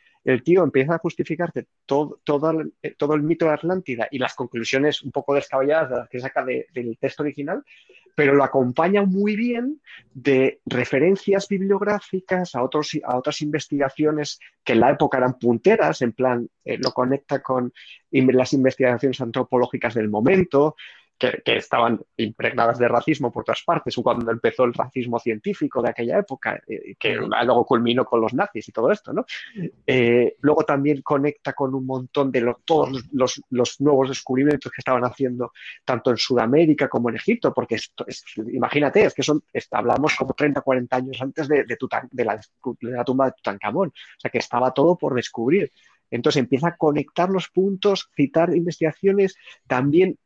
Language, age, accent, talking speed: Spanish, 30-49, Spanish, 175 wpm